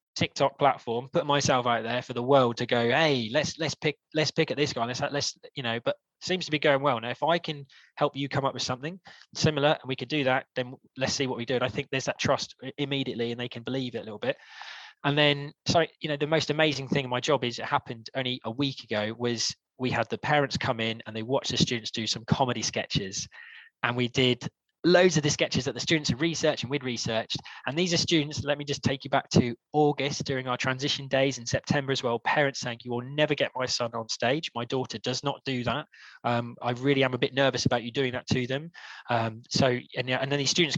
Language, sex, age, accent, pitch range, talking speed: English, male, 20-39, British, 120-145 Hz, 255 wpm